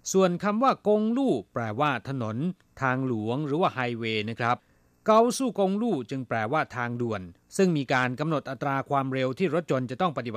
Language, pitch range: Thai, 115-165 Hz